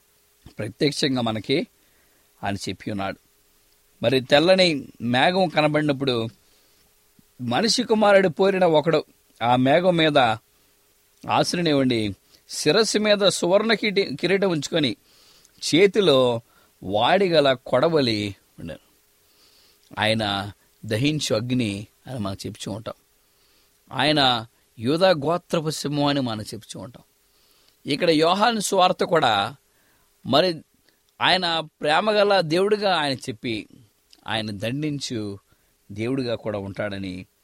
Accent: Indian